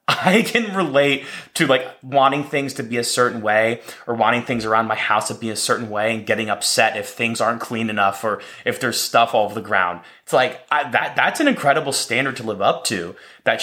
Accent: American